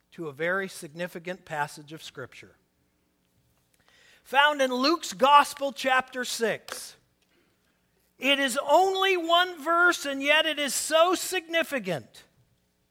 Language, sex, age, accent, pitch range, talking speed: English, male, 40-59, American, 235-315 Hz, 110 wpm